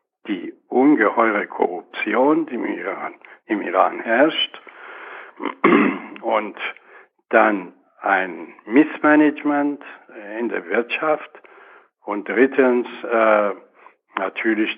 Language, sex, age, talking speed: German, male, 60-79, 75 wpm